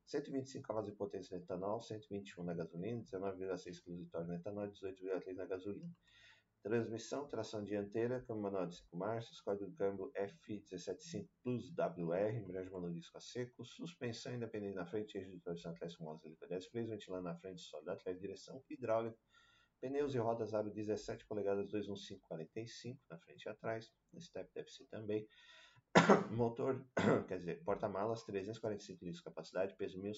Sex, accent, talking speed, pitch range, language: male, Brazilian, 155 wpm, 90-115 Hz, Portuguese